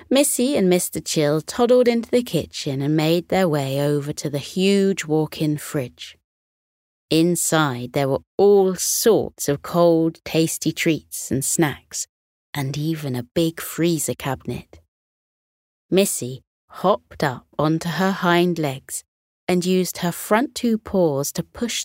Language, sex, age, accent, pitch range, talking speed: English, female, 30-49, British, 145-195 Hz, 135 wpm